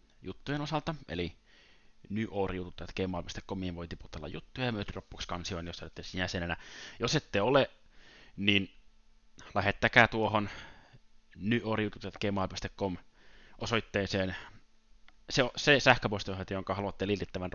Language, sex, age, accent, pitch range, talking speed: Finnish, male, 30-49, native, 90-120 Hz, 95 wpm